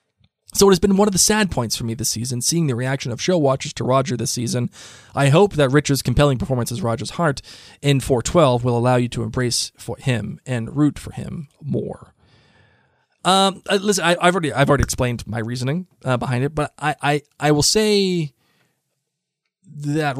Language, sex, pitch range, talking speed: English, male, 125-165 Hz, 200 wpm